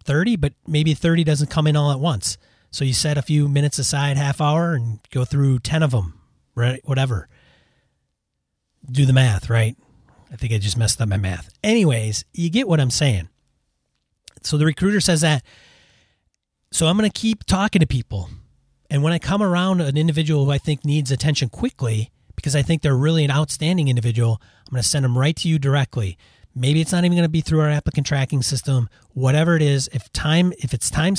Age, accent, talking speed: 30-49, American, 210 wpm